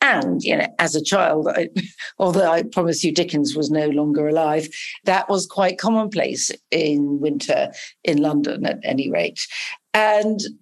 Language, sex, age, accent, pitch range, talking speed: English, female, 50-69, British, 165-215 Hz, 155 wpm